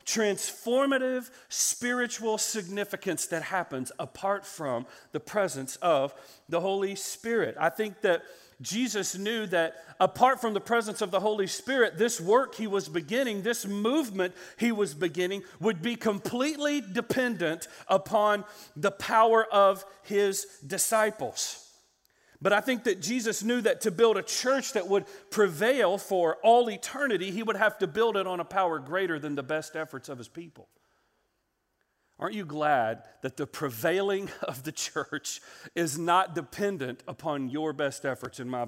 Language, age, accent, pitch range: English, 40-59, American, 150-215 Hz